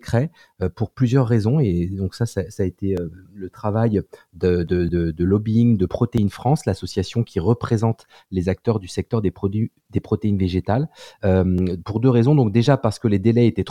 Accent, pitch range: French, 95-125 Hz